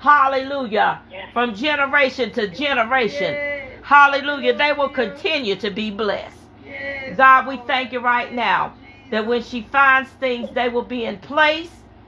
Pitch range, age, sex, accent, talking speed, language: 230-275 Hz, 40-59, female, American, 140 wpm, English